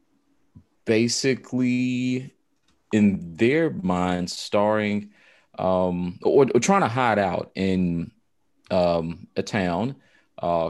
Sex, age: male, 30-49